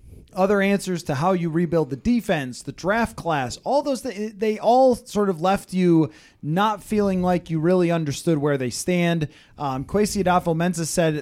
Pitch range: 150-195 Hz